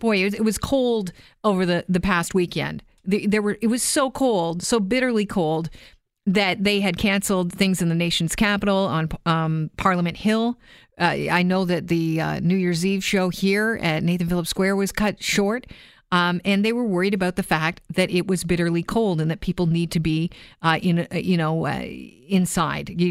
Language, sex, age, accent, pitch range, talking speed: English, female, 40-59, American, 170-205 Hz, 195 wpm